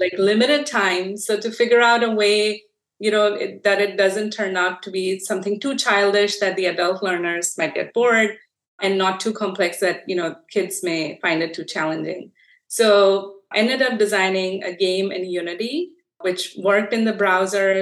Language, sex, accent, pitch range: English, female, Indian, 180-210 Hz